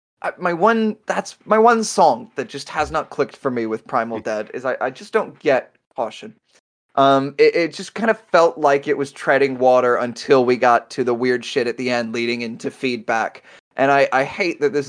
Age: 20-39